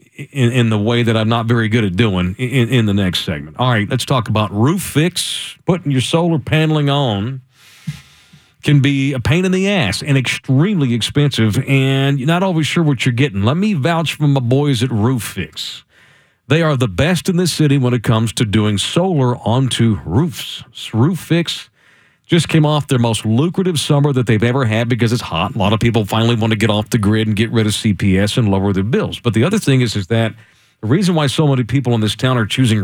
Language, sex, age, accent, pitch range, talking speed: English, male, 50-69, American, 110-145 Hz, 230 wpm